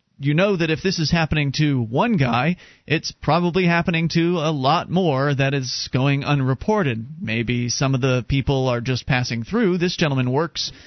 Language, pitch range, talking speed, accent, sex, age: English, 120-150 Hz, 180 wpm, American, male, 30-49